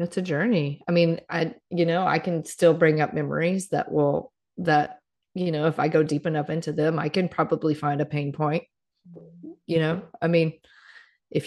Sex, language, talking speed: female, English, 200 wpm